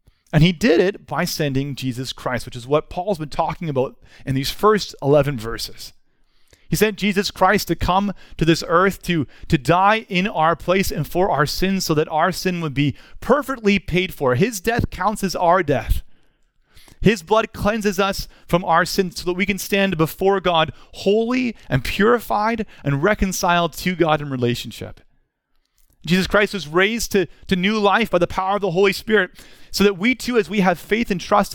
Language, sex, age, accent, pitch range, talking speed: English, male, 30-49, American, 160-205 Hz, 195 wpm